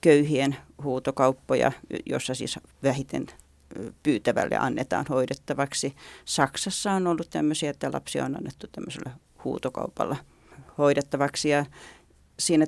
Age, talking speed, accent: 40-59, 100 wpm, native